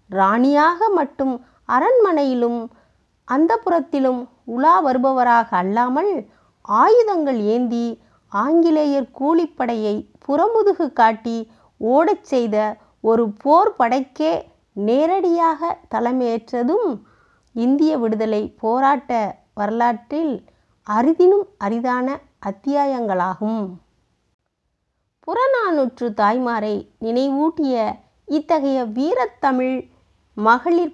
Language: Tamil